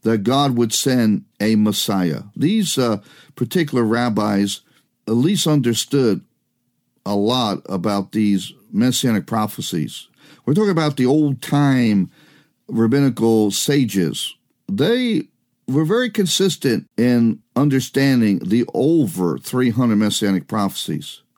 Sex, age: male, 50-69